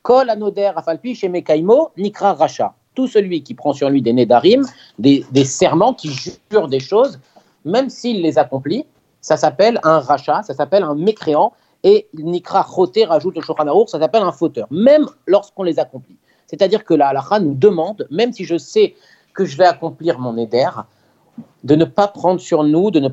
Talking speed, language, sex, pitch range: 190 wpm, French, male, 140-190 Hz